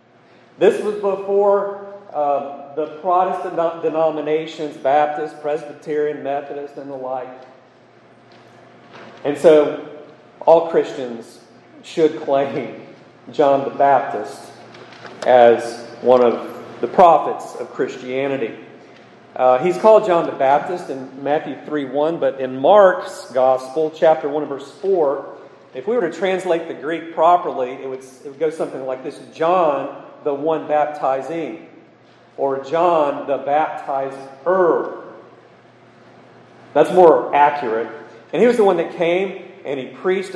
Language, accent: English, American